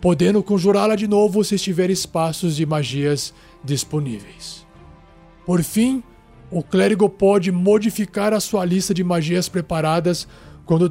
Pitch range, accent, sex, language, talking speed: 155-195 Hz, Brazilian, male, Portuguese, 125 wpm